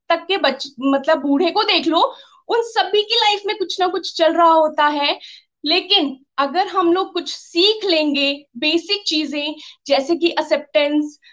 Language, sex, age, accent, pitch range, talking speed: Hindi, female, 20-39, native, 295-375 Hz, 170 wpm